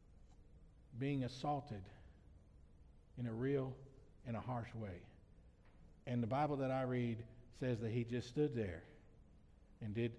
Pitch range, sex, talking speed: 95-125 Hz, male, 130 wpm